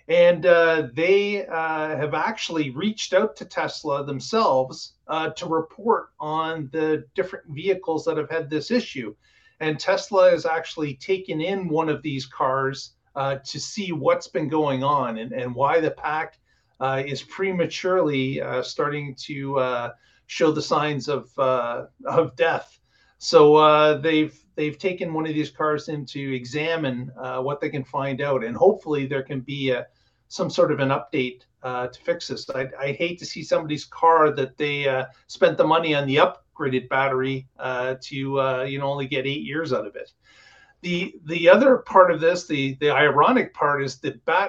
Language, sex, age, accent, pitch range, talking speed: English, male, 40-59, American, 135-175 Hz, 180 wpm